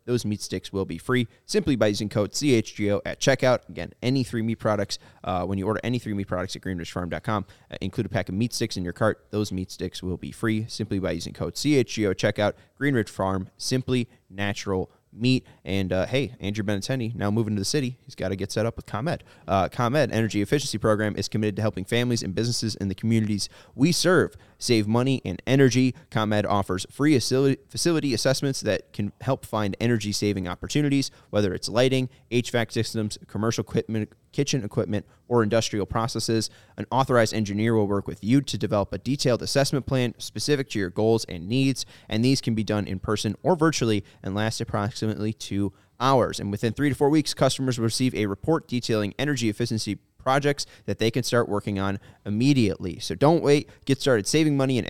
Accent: American